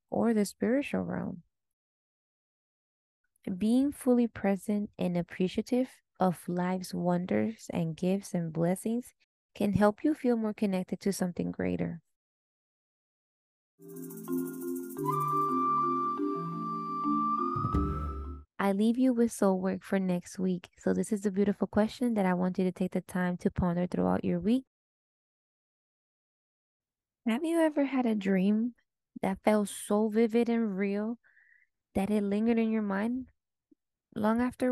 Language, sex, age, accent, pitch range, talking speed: English, female, 20-39, American, 185-230 Hz, 125 wpm